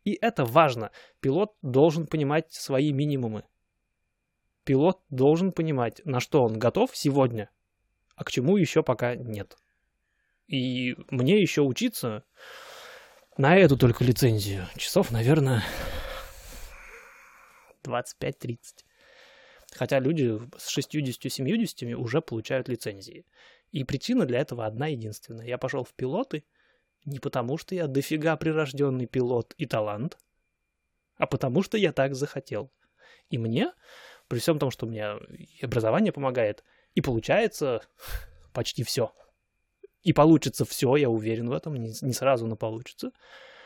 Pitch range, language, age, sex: 120-155 Hz, Russian, 20-39, male